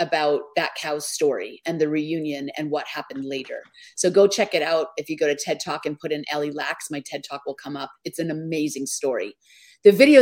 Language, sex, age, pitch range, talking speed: English, female, 30-49, 160-225 Hz, 230 wpm